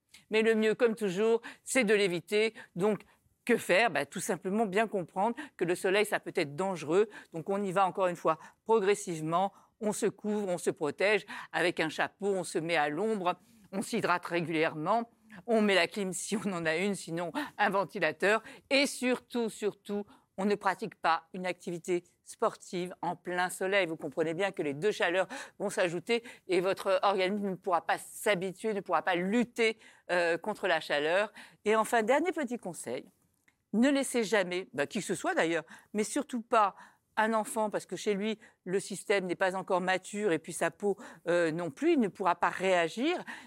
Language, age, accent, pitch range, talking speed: French, 50-69, French, 185-245 Hz, 190 wpm